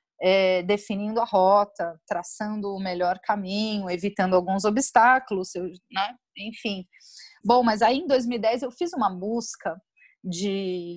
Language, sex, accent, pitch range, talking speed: Portuguese, female, Brazilian, 190-245 Hz, 120 wpm